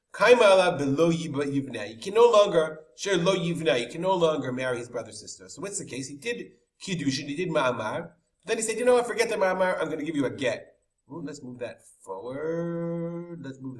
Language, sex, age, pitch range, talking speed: English, male, 30-49, 125-175 Hz, 200 wpm